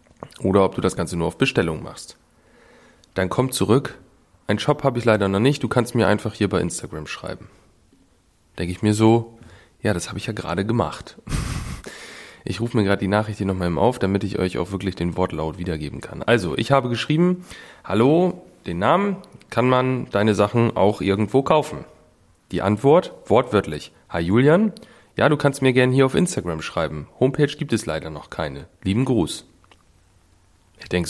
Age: 30-49